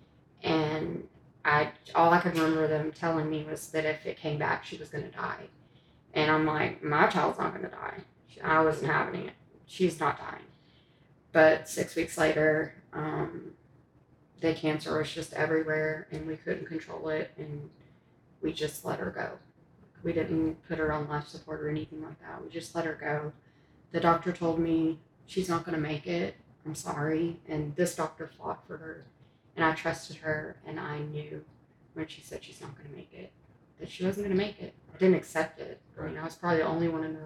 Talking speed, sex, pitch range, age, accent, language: 205 wpm, female, 155-170 Hz, 20-39, American, English